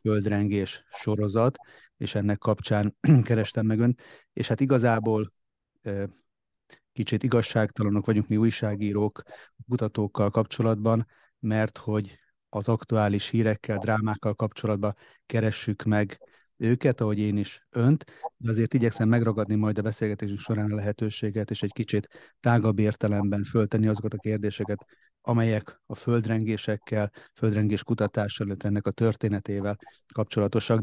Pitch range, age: 105-115 Hz, 30-49